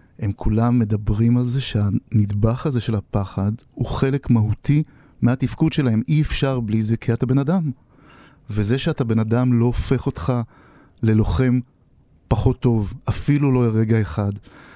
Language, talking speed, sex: English, 140 wpm, male